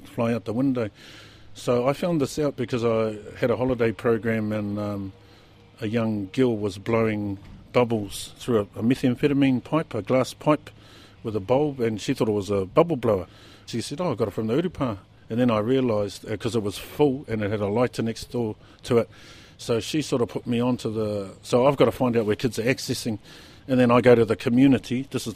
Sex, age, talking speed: male, 50-69, 225 wpm